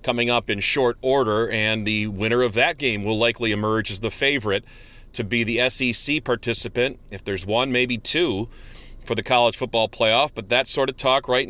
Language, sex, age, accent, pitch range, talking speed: English, male, 40-59, American, 115-145 Hz, 200 wpm